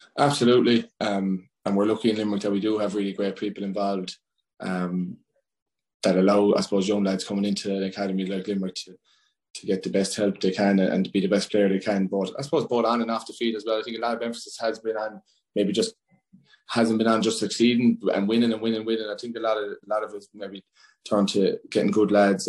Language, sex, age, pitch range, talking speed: English, male, 20-39, 95-110 Hz, 245 wpm